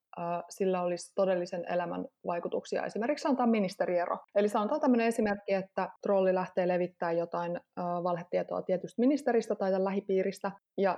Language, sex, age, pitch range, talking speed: Finnish, female, 20-39, 185-215 Hz, 125 wpm